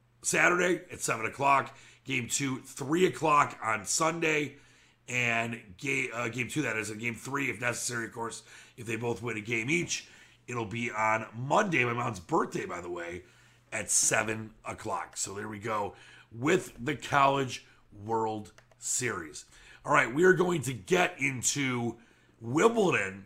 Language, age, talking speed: English, 30-49, 160 wpm